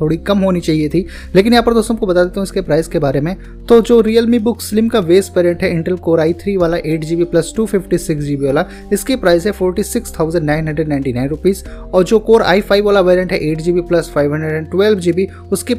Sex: male